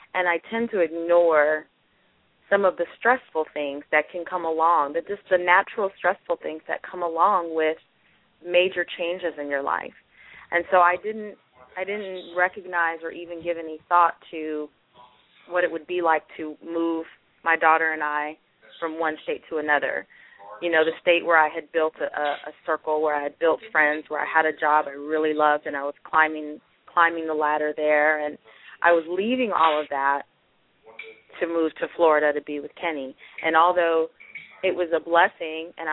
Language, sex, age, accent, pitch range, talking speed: English, female, 30-49, American, 155-180 Hz, 190 wpm